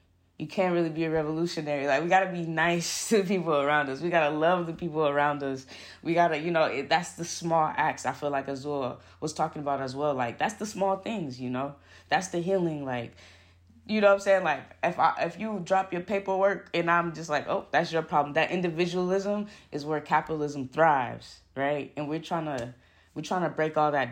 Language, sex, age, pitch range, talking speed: English, female, 20-39, 130-170 Hz, 230 wpm